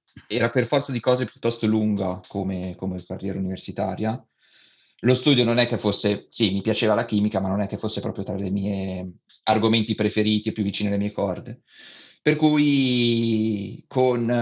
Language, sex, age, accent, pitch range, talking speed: Italian, male, 30-49, native, 95-115 Hz, 175 wpm